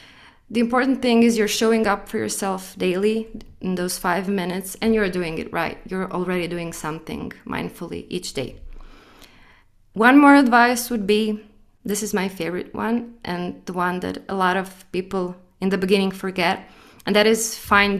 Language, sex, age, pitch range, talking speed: English, female, 20-39, 180-220 Hz, 175 wpm